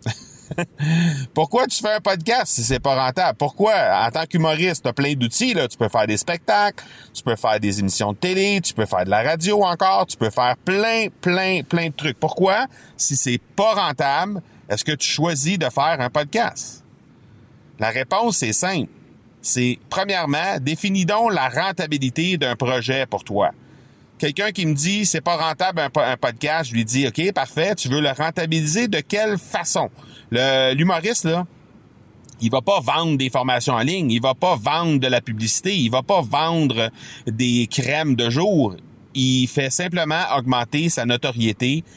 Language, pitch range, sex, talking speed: French, 115-160 Hz, male, 180 wpm